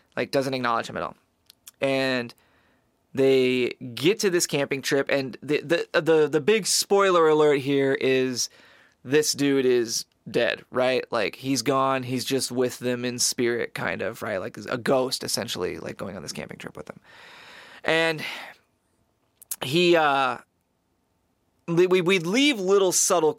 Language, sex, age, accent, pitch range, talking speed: English, male, 20-39, American, 130-160 Hz, 155 wpm